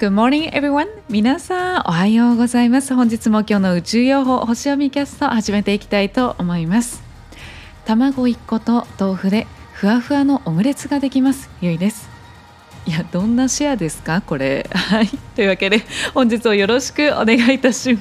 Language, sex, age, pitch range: Japanese, female, 20-39, 190-270 Hz